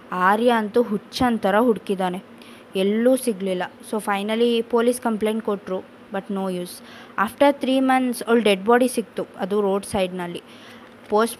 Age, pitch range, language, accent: 20-39, 195-245 Hz, Kannada, native